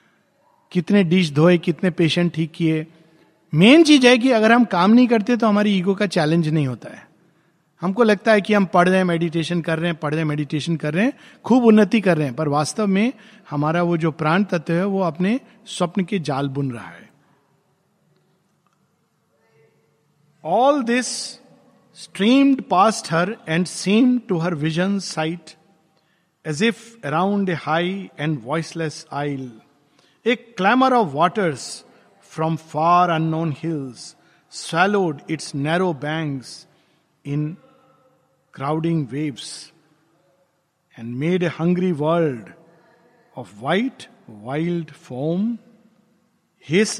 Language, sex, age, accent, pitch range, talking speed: Hindi, male, 50-69, native, 155-200 Hz, 140 wpm